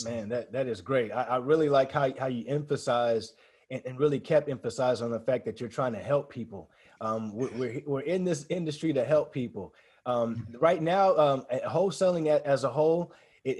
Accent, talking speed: American, 200 wpm